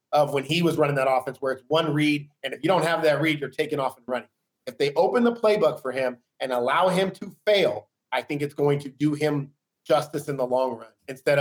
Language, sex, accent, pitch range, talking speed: English, male, American, 145-175 Hz, 250 wpm